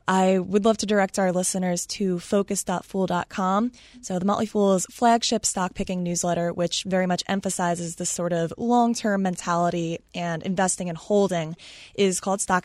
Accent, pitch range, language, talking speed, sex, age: American, 175-215 Hz, English, 155 wpm, female, 20-39